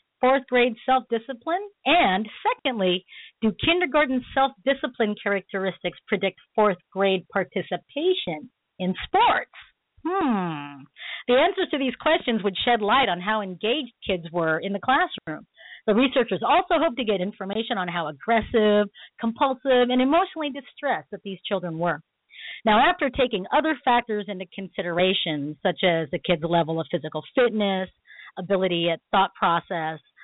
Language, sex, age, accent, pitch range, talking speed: English, female, 40-59, American, 185-260 Hz, 135 wpm